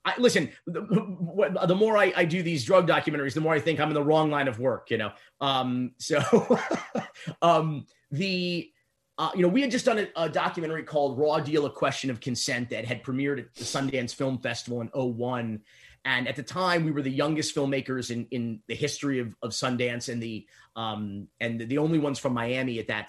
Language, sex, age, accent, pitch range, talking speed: English, male, 30-49, American, 125-160 Hz, 215 wpm